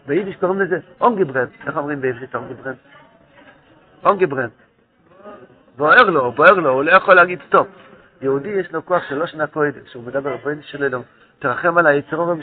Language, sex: Hebrew, male